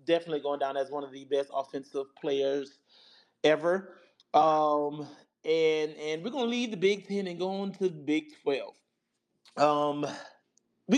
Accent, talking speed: American, 160 wpm